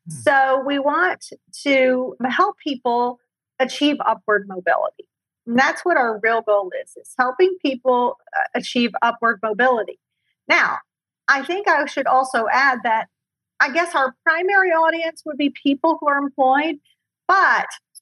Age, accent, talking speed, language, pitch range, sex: 40-59, American, 140 wpm, English, 220-280 Hz, female